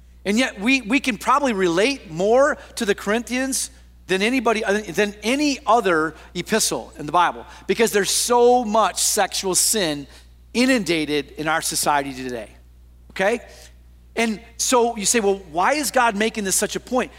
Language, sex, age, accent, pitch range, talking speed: English, male, 40-59, American, 185-270 Hz, 155 wpm